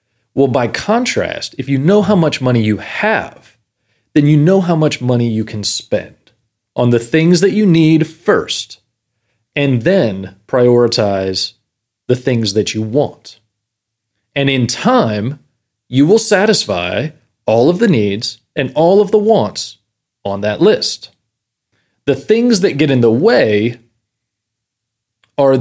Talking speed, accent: 145 wpm, American